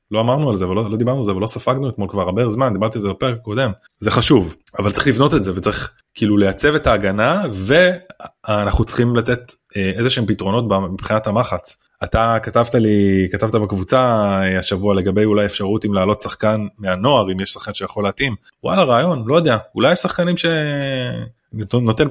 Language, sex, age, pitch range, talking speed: Hebrew, male, 20-39, 100-135 Hz, 180 wpm